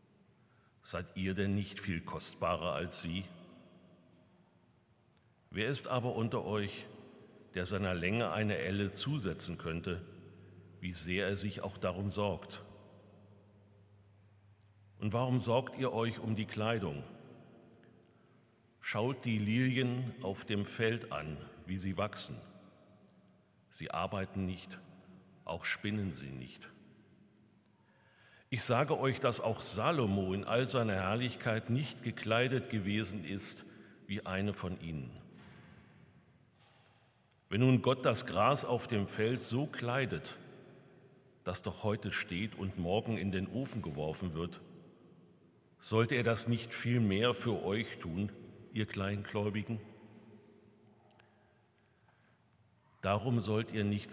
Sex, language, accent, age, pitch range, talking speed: male, German, German, 50-69, 95-115 Hz, 120 wpm